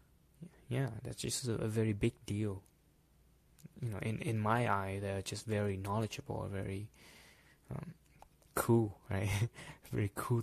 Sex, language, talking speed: male, English, 140 wpm